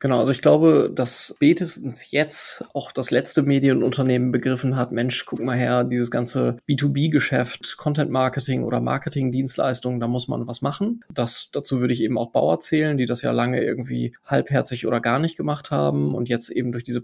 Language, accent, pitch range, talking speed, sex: German, German, 120-140 Hz, 180 wpm, male